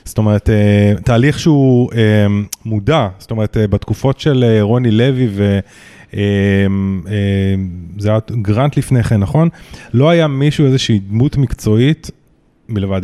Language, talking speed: Hebrew, 110 wpm